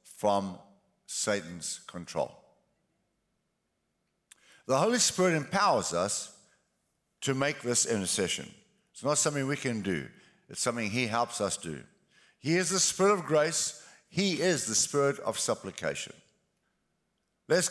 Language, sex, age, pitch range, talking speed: English, male, 50-69, 110-165 Hz, 125 wpm